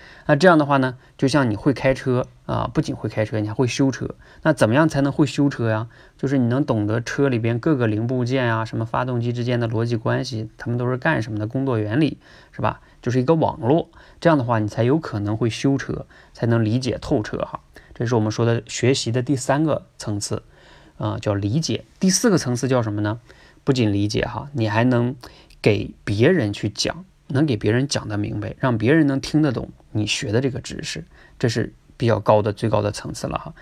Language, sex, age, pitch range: Chinese, male, 20-39, 110-135 Hz